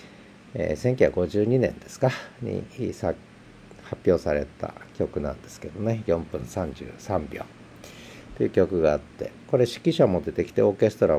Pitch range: 80-130 Hz